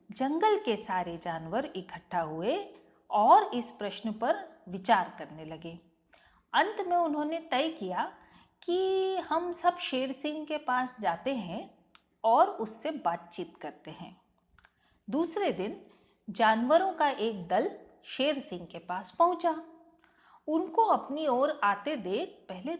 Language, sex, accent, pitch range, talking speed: Hindi, female, native, 210-320 Hz, 130 wpm